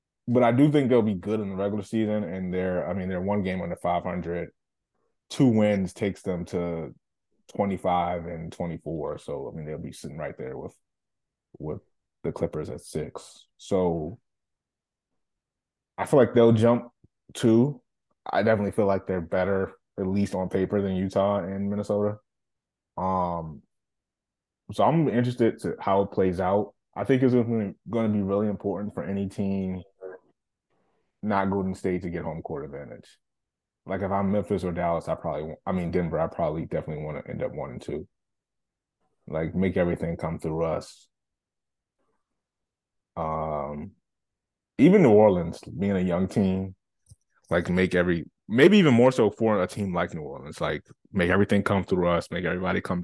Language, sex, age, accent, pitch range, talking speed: English, male, 20-39, American, 85-105 Hz, 170 wpm